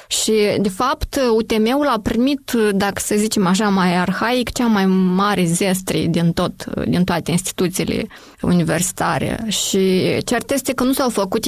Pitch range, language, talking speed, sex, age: 190-245 Hz, Romanian, 150 wpm, female, 20-39